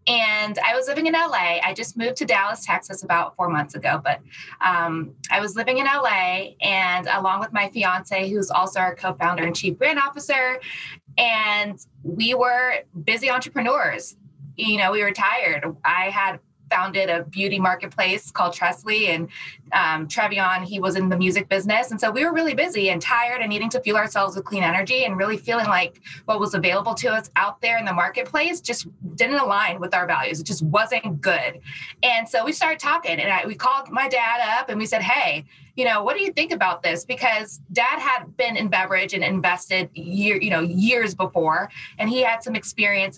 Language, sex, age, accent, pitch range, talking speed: English, female, 20-39, American, 180-240 Hz, 200 wpm